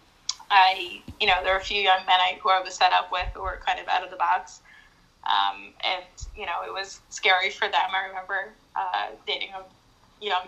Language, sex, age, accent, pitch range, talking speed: English, female, 10-29, American, 180-210 Hz, 225 wpm